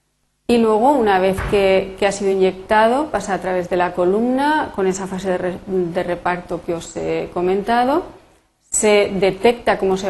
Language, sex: Spanish, female